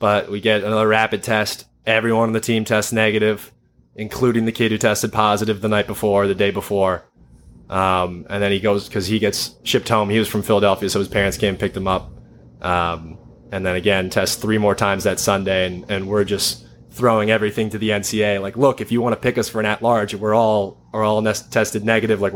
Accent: American